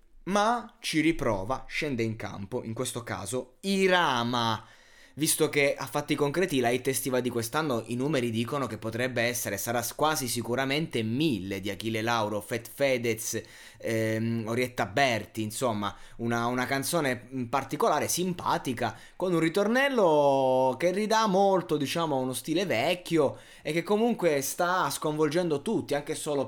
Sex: male